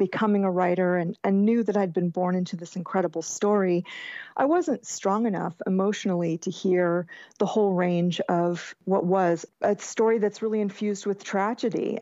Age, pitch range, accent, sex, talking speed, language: 40-59, 185-220 Hz, American, female, 170 wpm, English